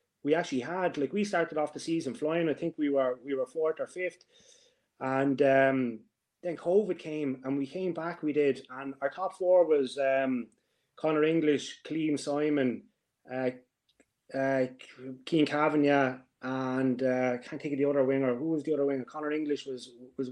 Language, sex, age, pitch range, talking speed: English, male, 30-49, 135-170 Hz, 175 wpm